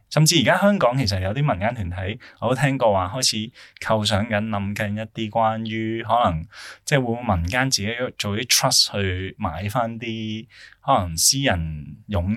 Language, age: Chinese, 20-39